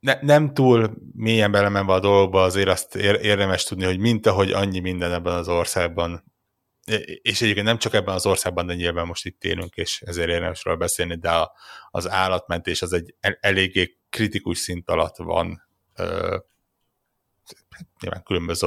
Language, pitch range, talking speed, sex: Hungarian, 85-100 Hz, 165 wpm, male